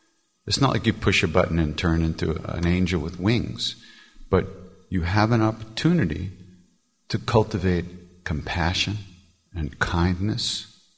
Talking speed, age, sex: 130 wpm, 60-79, male